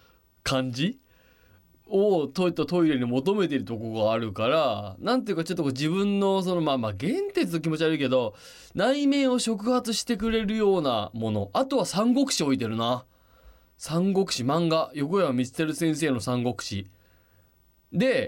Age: 20-39